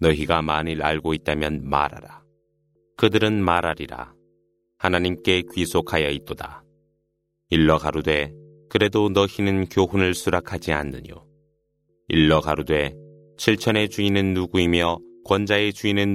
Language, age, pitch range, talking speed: Arabic, 30-49, 85-105 Hz, 80 wpm